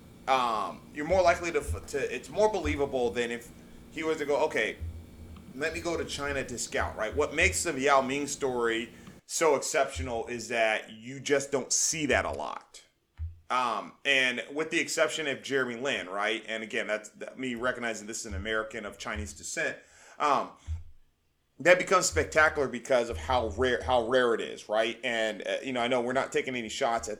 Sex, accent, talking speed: male, American, 190 wpm